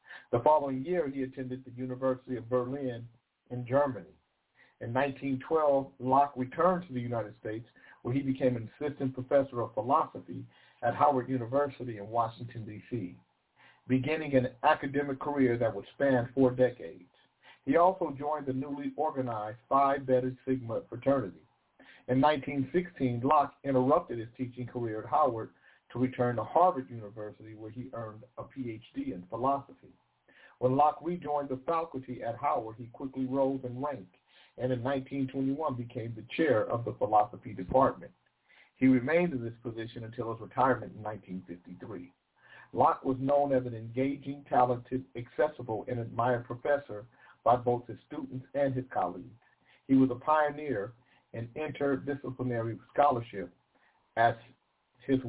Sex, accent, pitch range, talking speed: male, American, 115-140 Hz, 145 wpm